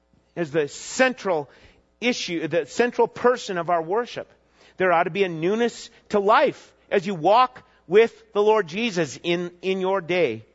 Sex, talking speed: male, 165 wpm